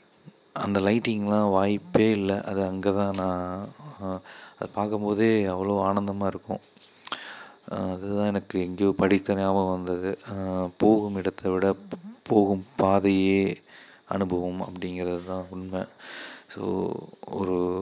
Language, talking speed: Tamil, 100 wpm